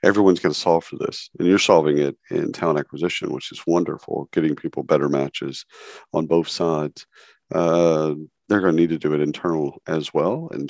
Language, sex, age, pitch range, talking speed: English, male, 50-69, 75-85 Hz, 195 wpm